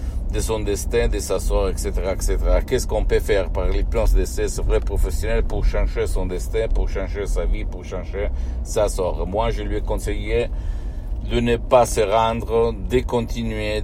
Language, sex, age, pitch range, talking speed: Italian, male, 60-79, 85-110 Hz, 180 wpm